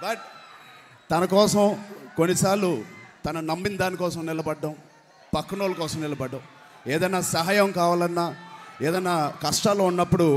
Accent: native